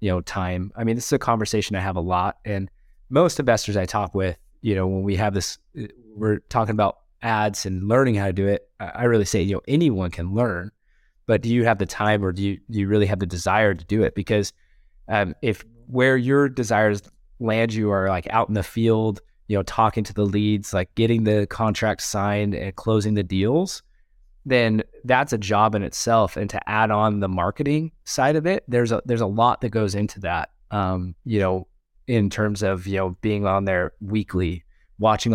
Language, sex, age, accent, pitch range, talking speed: English, male, 20-39, American, 95-115 Hz, 215 wpm